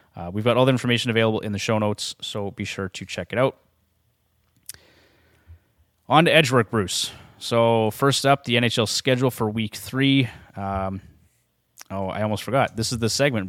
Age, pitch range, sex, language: 30-49, 105-125 Hz, male, English